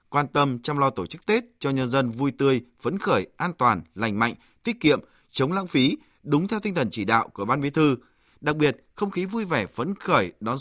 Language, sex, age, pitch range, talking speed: Vietnamese, male, 20-39, 120-180 Hz, 240 wpm